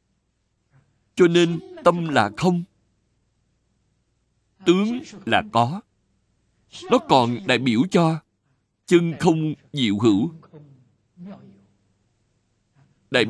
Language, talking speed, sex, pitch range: Vietnamese, 80 wpm, male, 105-165 Hz